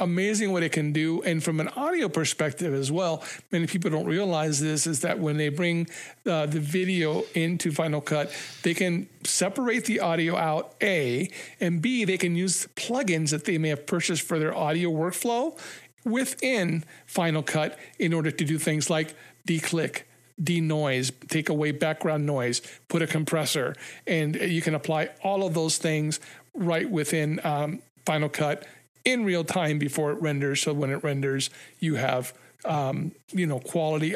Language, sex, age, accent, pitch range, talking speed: English, male, 50-69, American, 145-175 Hz, 170 wpm